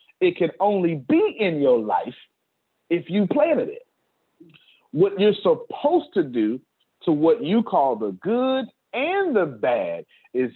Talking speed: 150 wpm